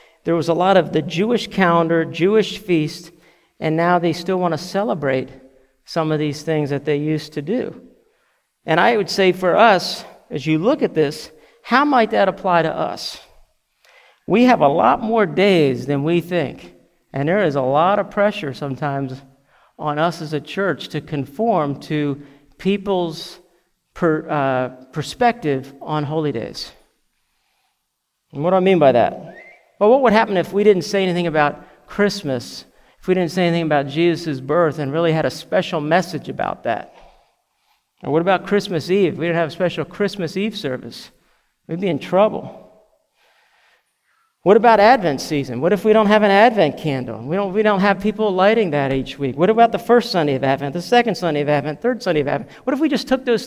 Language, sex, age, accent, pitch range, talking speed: English, male, 50-69, American, 150-205 Hz, 190 wpm